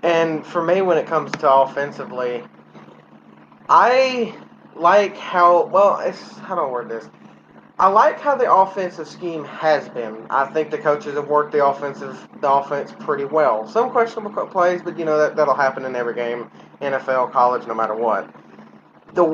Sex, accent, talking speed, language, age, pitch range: male, American, 170 wpm, English, 20-39, 140-200 Hz